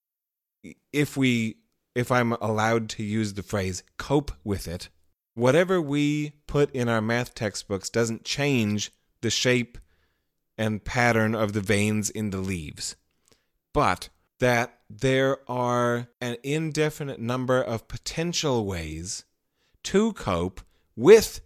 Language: English